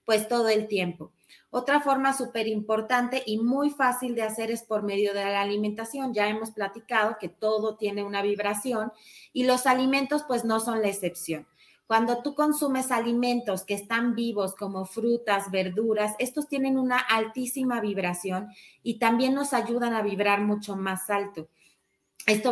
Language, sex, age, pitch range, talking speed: Spanish, female, 30-49, 200-245 Hz, 160 wpm